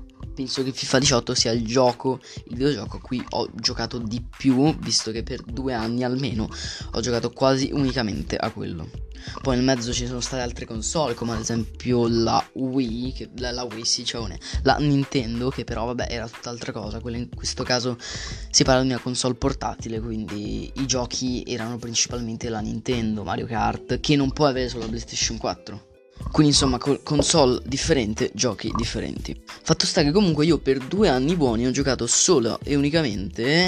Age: 20-39